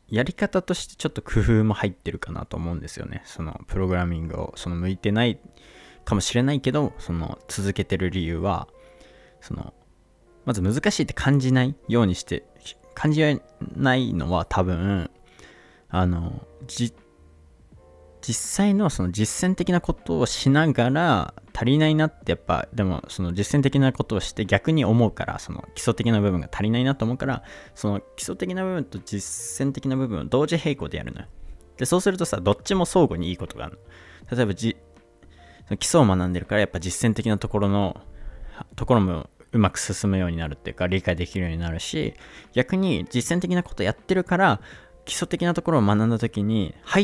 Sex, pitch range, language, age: male, 90-135 Hz, Japanese, 20-39